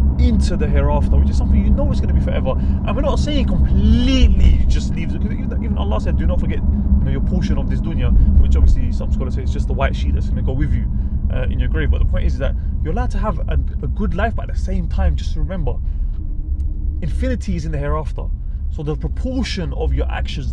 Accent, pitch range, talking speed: British, 70-75 Hz, 250 wpm